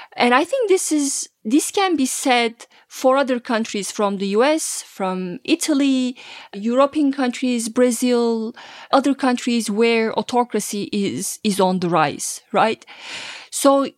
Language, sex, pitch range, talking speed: English, female, 225-275 Hz, 135 wpm